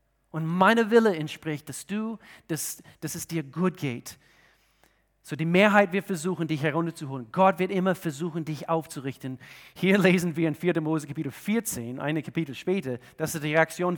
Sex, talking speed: male, 170 wpm